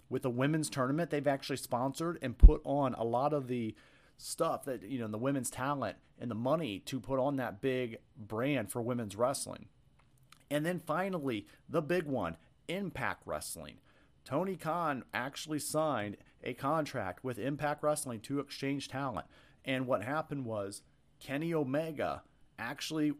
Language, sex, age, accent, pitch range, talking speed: English, male, 40-59, American, 125-145 Hz, 155 wpm